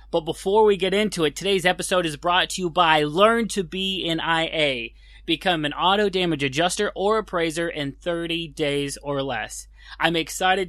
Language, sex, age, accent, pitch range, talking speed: English, male, 20-39, American, 145-190 Hz, 180 wpm